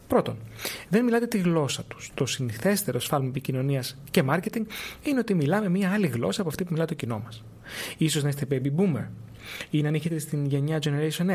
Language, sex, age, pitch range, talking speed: Greek, male, 30-49, 140-175 Hz, 190 wpm